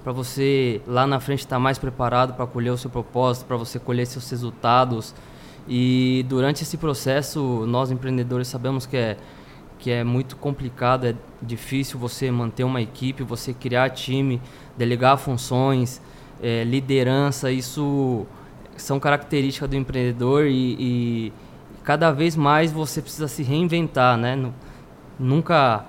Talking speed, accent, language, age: 135 wpm, Brazilian, Portuguese, 20-39